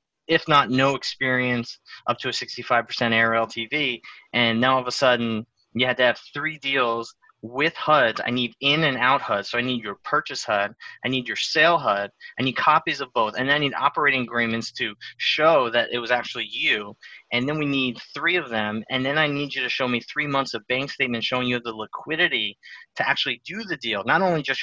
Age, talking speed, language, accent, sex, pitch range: 30-49, 220 wpm, English, American, male, 115-140 Hz